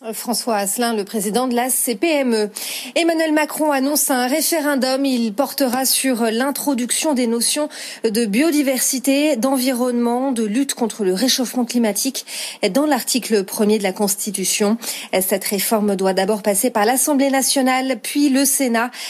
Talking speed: 140 wpm